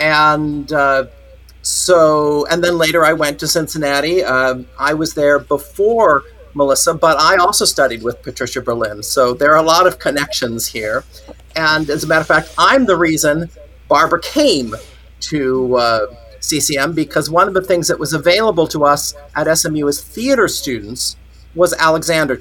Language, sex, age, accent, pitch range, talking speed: English, male, 50-69, American, 130-160 Hz, 165 wpm